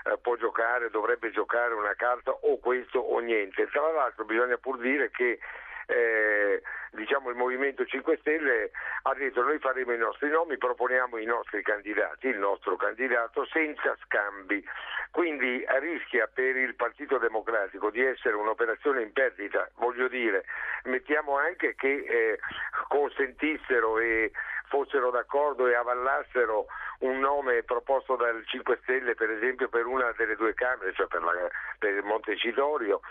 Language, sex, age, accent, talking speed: Italian, male, 50-69, native, 140 wpm